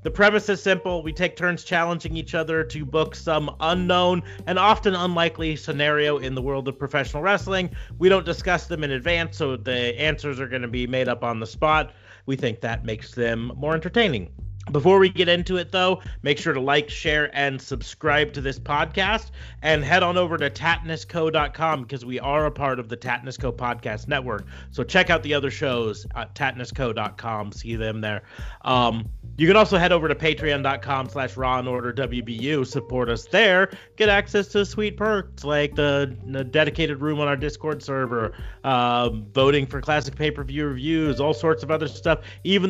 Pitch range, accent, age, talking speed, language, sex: 120-160 Hz, American, 40-59, 185 wpm, English, male